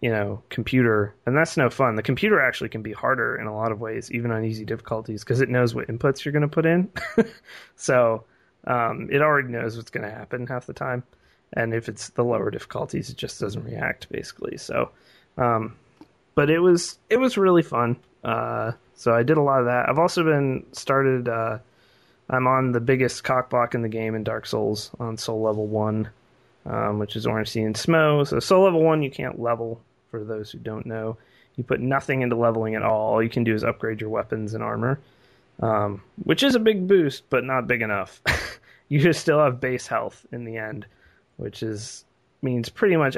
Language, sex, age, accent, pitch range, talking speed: English, male, 20-39, American, 110-140 Hz, 210 wpm